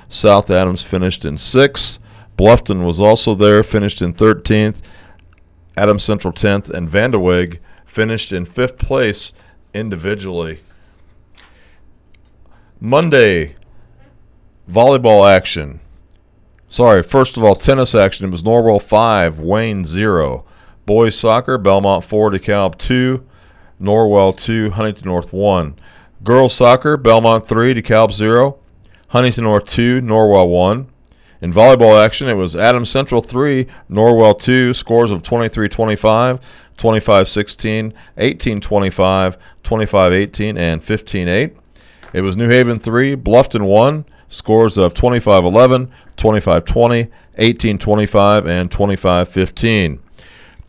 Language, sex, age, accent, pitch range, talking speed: English, male, 50-69, American, 95-120 Hz, 110 wpm